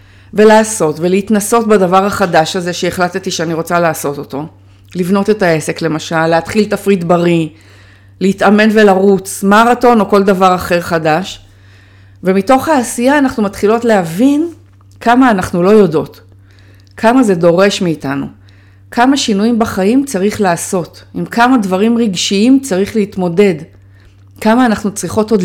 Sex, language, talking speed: female, Hebrew, 125 wpm